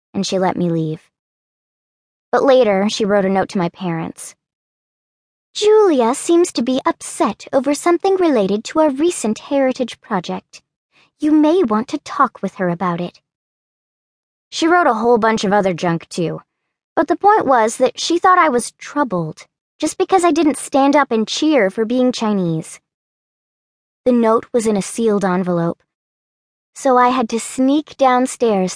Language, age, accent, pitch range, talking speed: English, 20-39, American, 190-275 Hz, 165 wpm